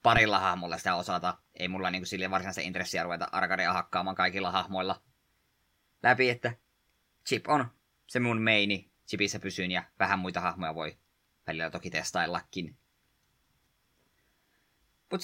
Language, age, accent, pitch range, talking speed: Finnish, 20-39, native, 95-125 Hz, 135 wpm